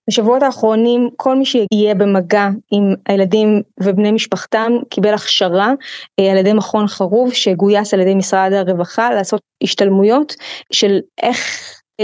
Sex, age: female, 20-39